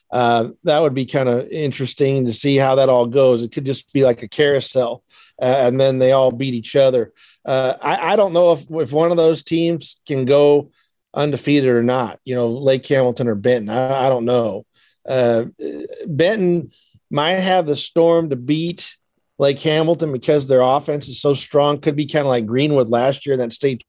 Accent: American